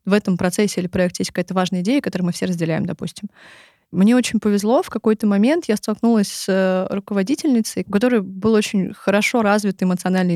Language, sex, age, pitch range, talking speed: Russian, female, 20-39, 185-220 Hz, 175 wpm